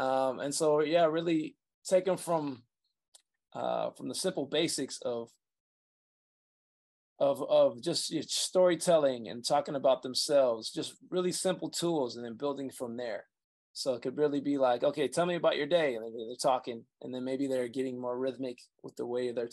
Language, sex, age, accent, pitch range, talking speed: English, male, 20-39, American, 125-150 Hz, 180 wpm